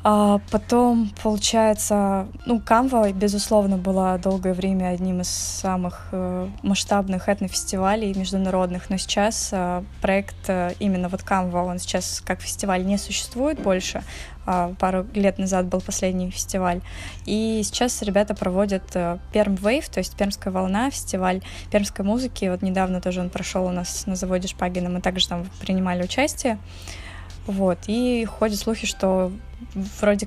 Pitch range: 180-215 Hz